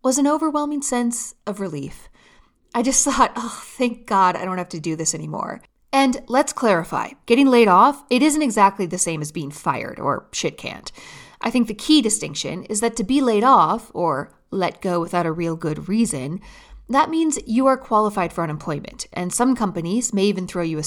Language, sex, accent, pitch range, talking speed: English, female, American, 175-260 Hz, 200 wpm